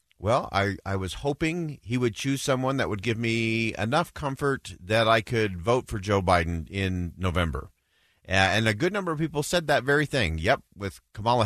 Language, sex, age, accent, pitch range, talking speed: English, male, 40-59, American, 95-130 Hz, 195 wpm